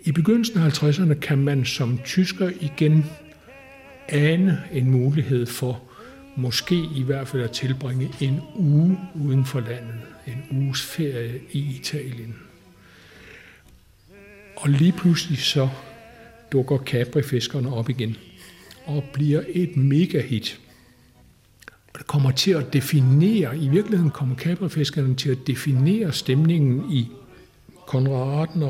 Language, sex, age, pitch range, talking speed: Danish, male, 60-79, 130-155 Hz, 125 wpm